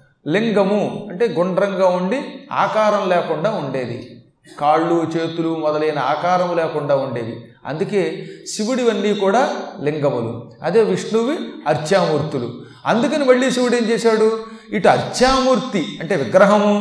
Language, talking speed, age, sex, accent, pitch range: Telugu, 105 wpm, 30-49, male, native, 155-225 Hz